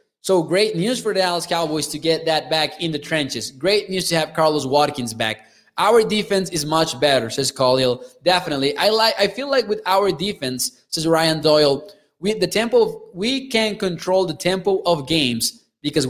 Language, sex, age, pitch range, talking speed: English, male, 20-39, 150-185 Hz, 195 wpm